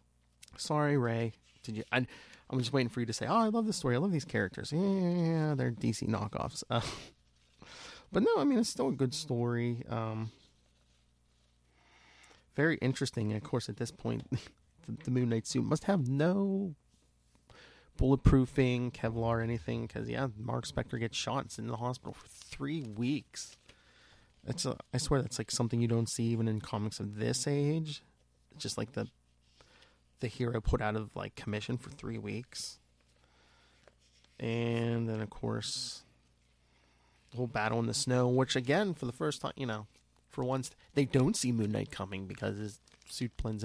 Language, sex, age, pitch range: English, male, 30-49, 100-130 Hz